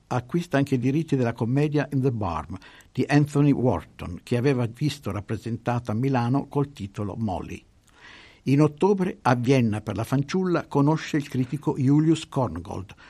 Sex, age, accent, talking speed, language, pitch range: male, 60-79, native, 150 wpm, Italian, 110-145 Hz